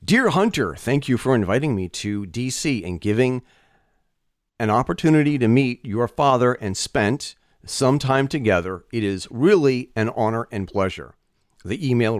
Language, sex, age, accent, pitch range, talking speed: English, male, 40-59, American, 105-145 Hz, 150 wpm